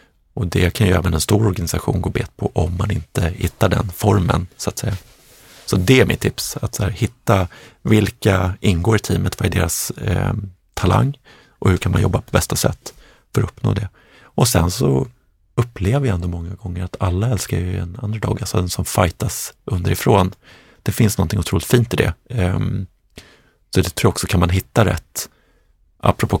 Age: 30-49